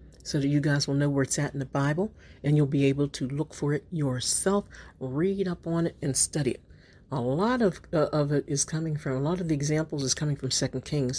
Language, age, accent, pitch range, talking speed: English, 50-69, American, 135-170 Hz, 250 wpm